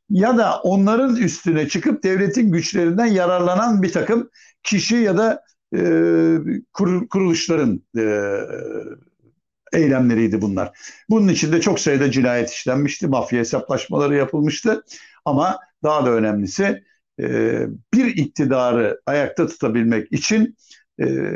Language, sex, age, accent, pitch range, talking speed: Turkish, male, 60-79, native, 125-195 Hz, 110 wpm